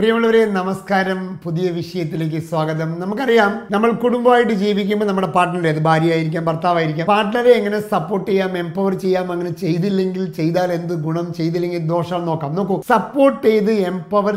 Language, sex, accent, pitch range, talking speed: Malayalam, male, native, 170-210 Hz, 135 wpm